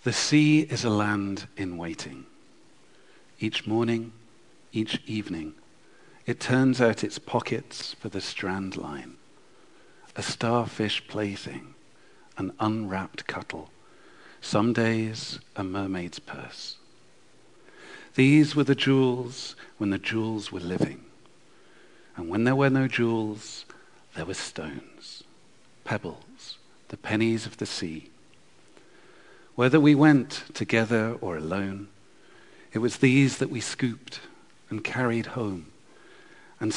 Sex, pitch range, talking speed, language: male, 100-120 Hz, 115 wpm, English